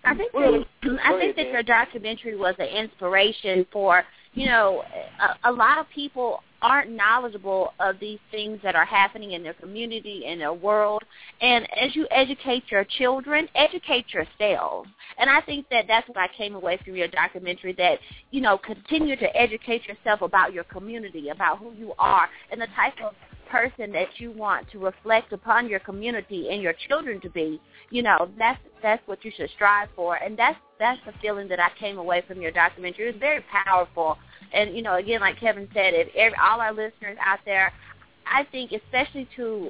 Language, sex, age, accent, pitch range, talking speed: English, female, 30-49, American, 190-235 Hz, 185 wpm